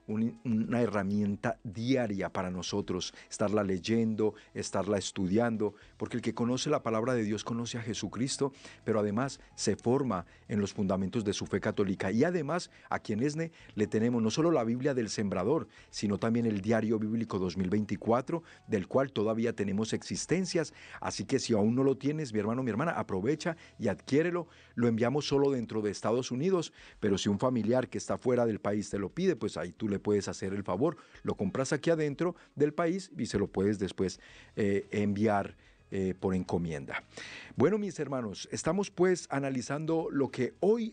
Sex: male